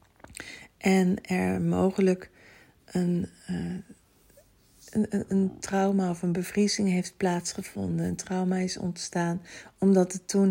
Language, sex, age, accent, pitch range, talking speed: Dutch, female, 40-59, Dutch, 175-200 Hz, 115 wpm